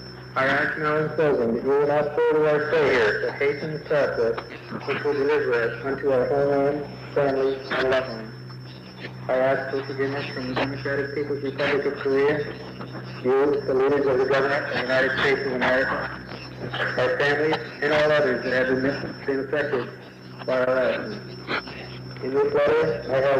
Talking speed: 180 wpm